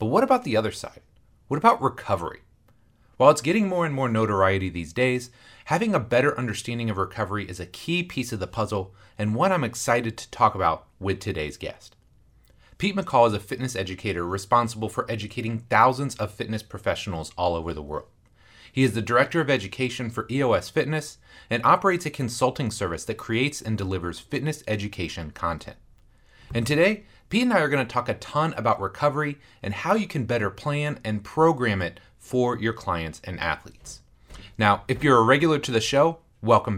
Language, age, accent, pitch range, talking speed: English, 30-49, American, 100-145 Hz, 190 wpm